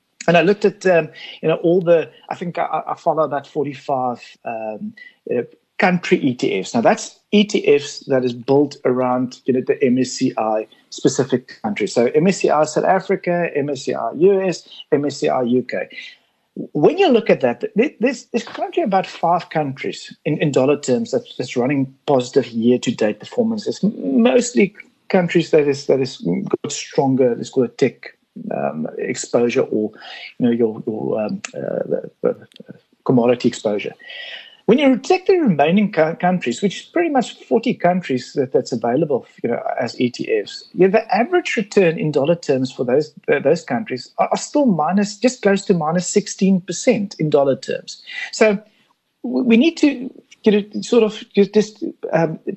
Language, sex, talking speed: English, male, 160 wpm